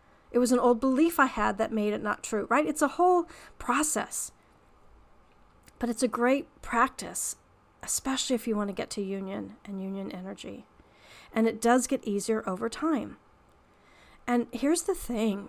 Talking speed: 170 wpm